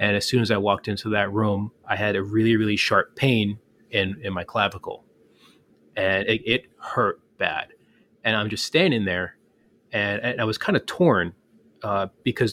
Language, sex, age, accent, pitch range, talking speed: English, male, 30-49, American, 100-115 Hz, 180 wpm